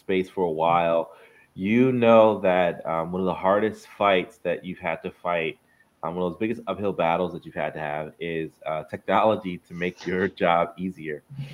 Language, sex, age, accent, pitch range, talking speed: English, male, 30-49, American, 85-105 Hz, 200 wpm